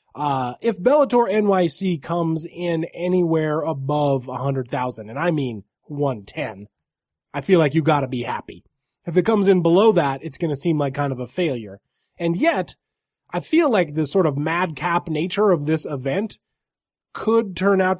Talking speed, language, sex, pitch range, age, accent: 175 wpm, English, male, 140-180 Hz, 20-39, American